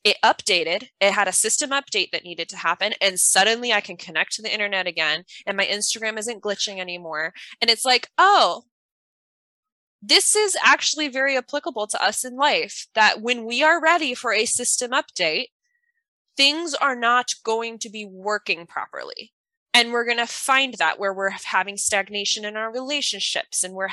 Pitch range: 190-250 Hz